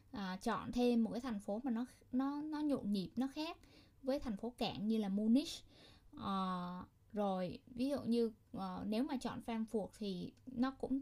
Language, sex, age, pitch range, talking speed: Vietnamese, female, 10-29, 195-245 Hz, 190 wpm